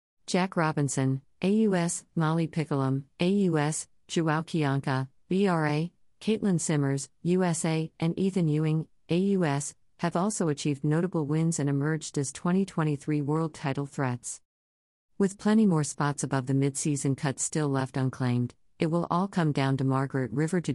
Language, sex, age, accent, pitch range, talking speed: English, female, 50-69, American, 130-160 Hz, 140 wpm